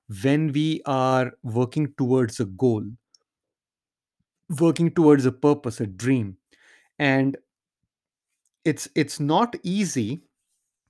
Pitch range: 120-140 Hz